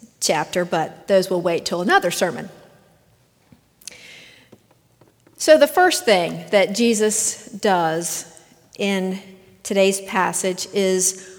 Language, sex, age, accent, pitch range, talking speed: English, female, 50-69, American, 185-225 Hz, 100 wpm